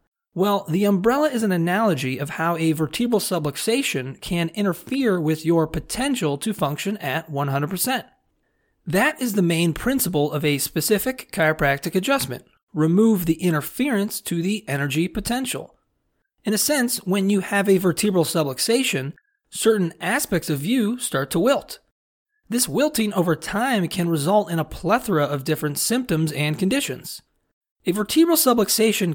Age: 30-49